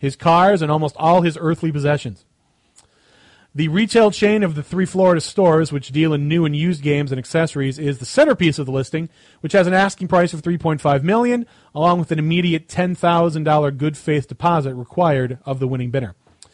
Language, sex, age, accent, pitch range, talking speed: English, male, 30-49, American, 145-185 Hz, 185 wpm